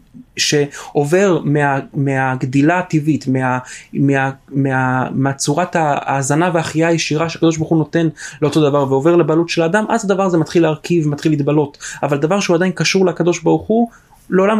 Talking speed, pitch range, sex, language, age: 110 wpm, 150-185 Hz, male, Hebrew, 30-49